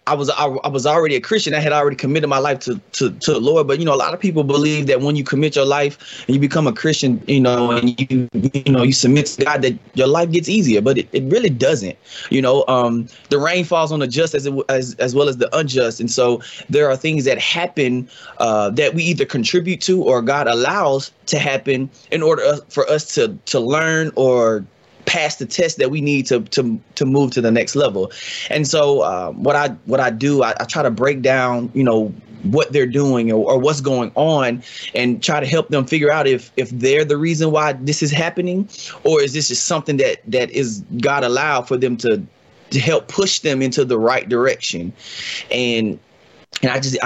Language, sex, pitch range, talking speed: English, male, 125-155 Hz, 230 wpm